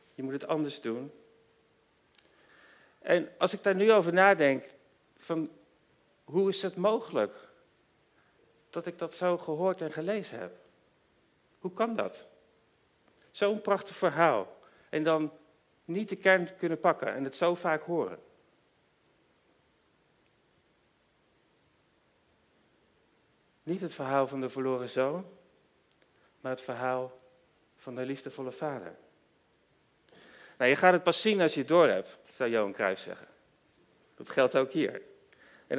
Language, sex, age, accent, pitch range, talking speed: Dutch, male, 50-69, Dutch, 135-190 Hz, 125 wpm